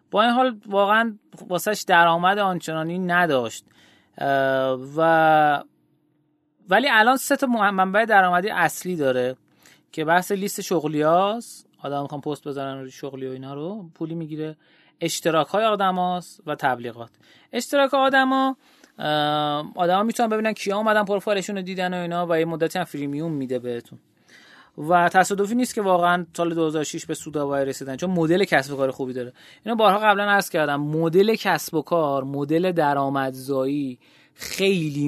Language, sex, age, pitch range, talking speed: Persian, male, 30-49, 145-200 Hz, 145 wpm